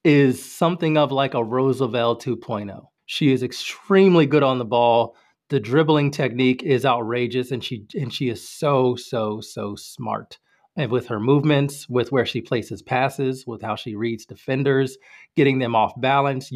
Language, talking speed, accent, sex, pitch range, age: English, 165 wpm, American, male, 120-150 Hz, 30-49